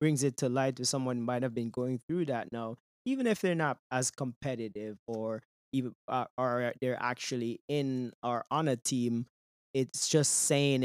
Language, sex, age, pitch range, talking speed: English, male, 20-39, 105-125 Hz, 185 wpm